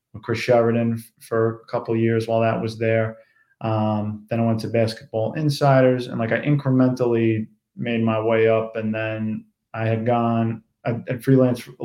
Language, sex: English, male